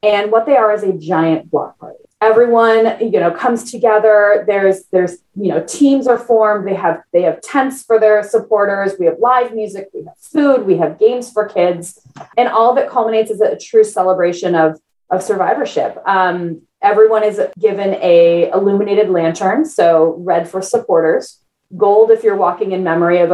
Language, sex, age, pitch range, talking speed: English, female, 30-49, 170-215 Hz, 185 wpm